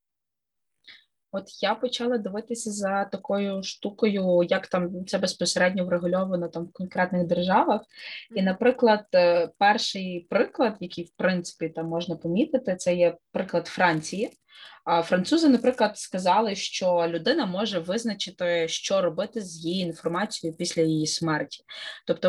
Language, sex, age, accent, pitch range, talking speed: Ukrainian, female, 20-39, native, 165-205 Hz, 125 wpm